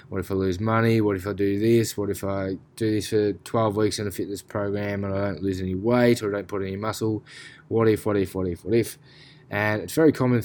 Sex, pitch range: male, 95-110 Hz